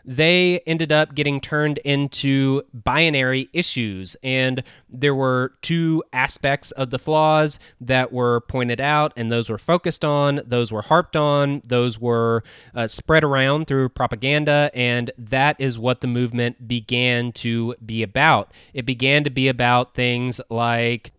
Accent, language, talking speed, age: American, English, 150 wpm, 20-39